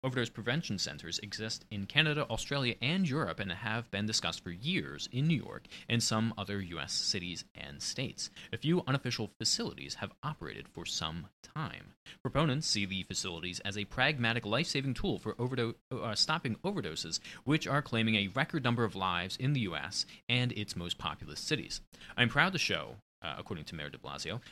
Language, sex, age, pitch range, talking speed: English, male, 30-49, 95-130 Hz, 180 wpm